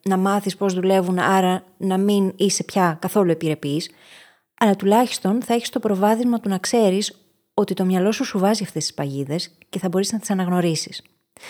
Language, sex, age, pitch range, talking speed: Greek, female, 20-39, 180-235 Hz, 185 wpm